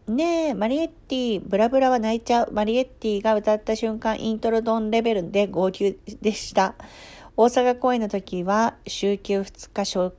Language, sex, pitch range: Japanese, female, 180-240 Hz